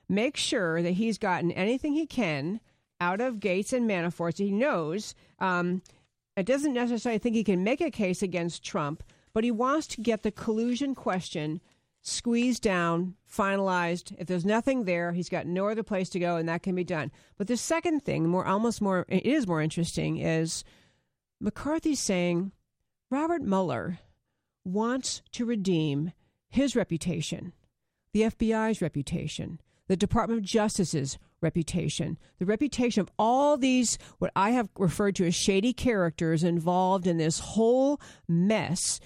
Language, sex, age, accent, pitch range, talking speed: English, female, 50-69, American, 175-230 Hz, 155 wpm